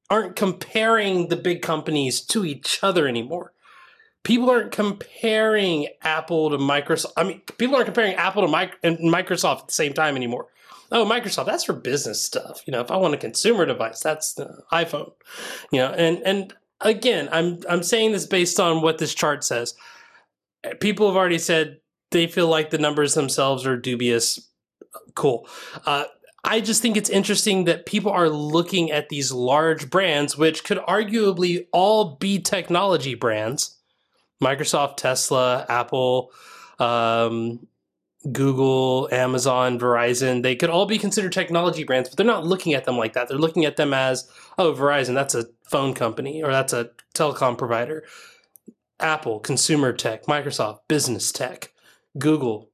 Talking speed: 160 wpm